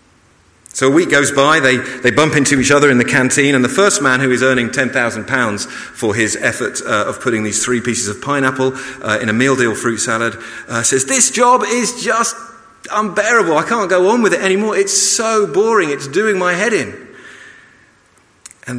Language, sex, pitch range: English, male, 115-180 Hz